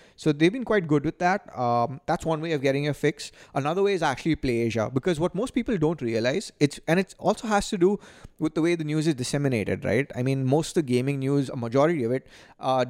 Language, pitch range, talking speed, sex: English, 120-155 Hz, 250 wpm, male